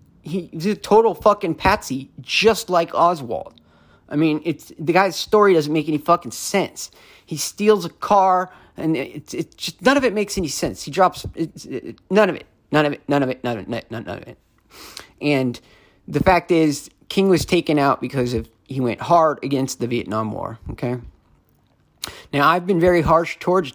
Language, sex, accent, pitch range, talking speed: English, male, American, 140-175 Hz, 195 wpm